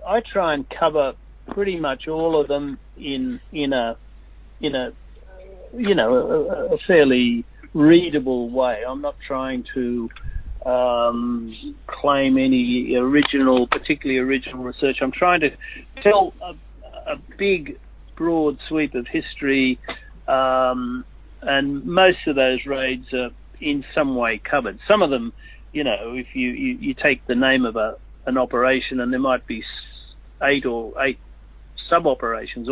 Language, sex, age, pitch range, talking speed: English, male, 50-69, 125-155 Hz, 145 wpm